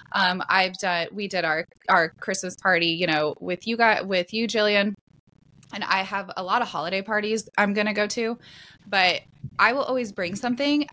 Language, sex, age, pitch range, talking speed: English, female, 20-39, 180-225 Hz, 190 wpm